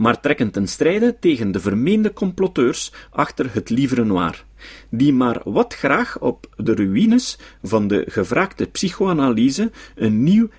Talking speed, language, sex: 140 wpm, Dutch, male